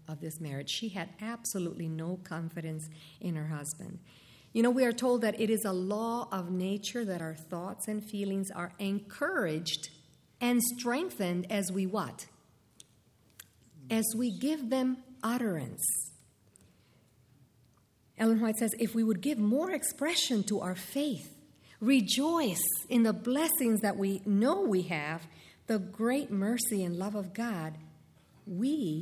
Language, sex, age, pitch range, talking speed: English, female, 50-69, 165-230 Hz, 140 wpm